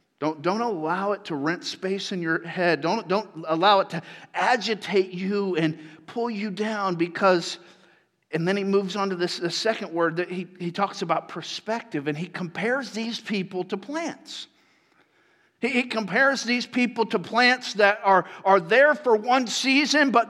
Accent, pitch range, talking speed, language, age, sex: American, 175-230 Hz, 175 wpm, English, 50-69, male